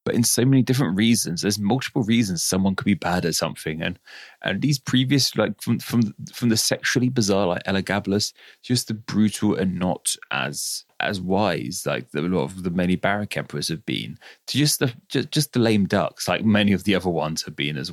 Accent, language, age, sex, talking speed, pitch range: British, English, 30-49, male, 215 wpm, 95-125 Hz